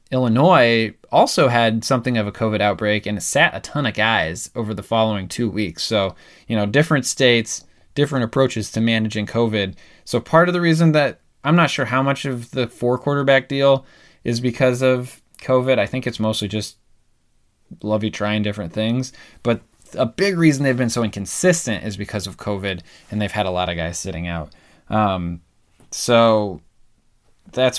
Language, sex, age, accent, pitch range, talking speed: English, male, 20-39, American, 105-125 Hz, 180 wpm